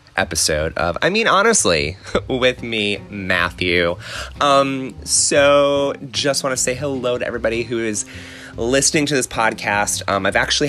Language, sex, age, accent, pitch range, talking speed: English, male, 30-49, American, 90-130 Hz, 145 wpm